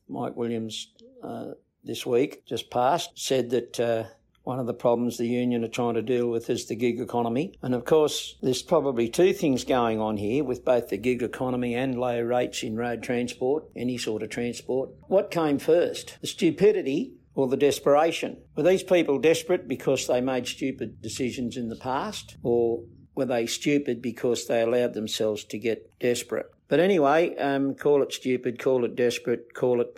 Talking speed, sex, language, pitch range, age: 185 wpm, male, English, 115-135 Hz, 60-79